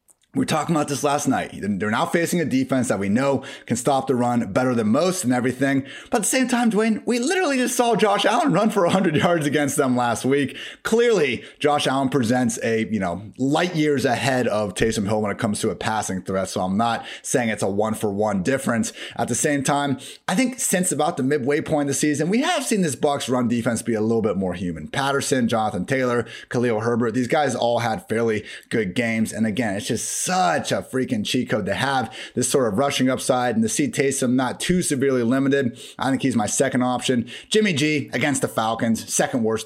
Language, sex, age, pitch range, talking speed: English, male, 30-49, 115-150 Hz, 225 wpm